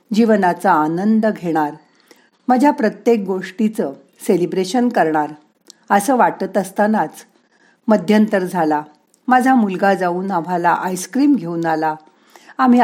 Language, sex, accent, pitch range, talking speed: Marathi, female, native, 175-235 Hz, 100 wpm